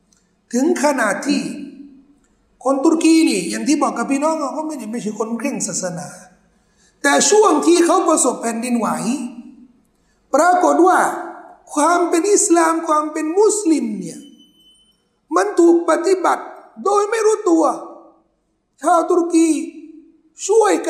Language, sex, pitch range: Thai, male, 255-330 Hz